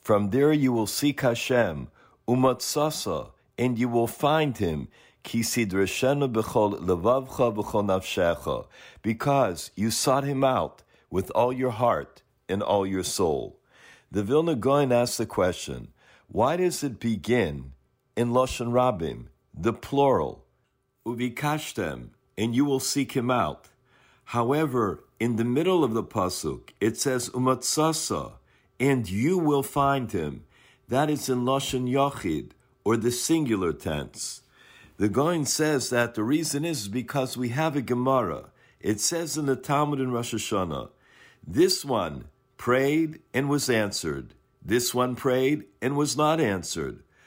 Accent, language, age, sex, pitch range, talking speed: American, English, 50-69, male, 115-145 Hz, 140 wpm